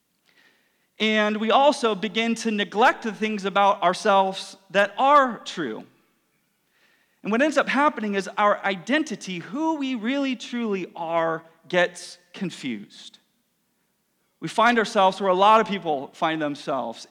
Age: 40-59